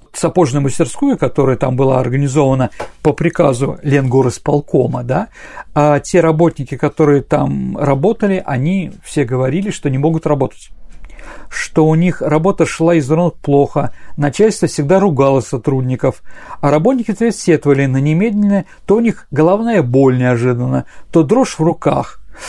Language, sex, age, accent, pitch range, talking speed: Russian, male, 40-59, native, 145-190 Hz, 135 wpm